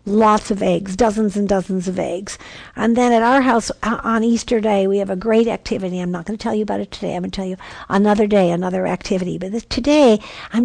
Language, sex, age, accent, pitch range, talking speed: English, female, 60-79, American, 195-245 Hz, 240 wpm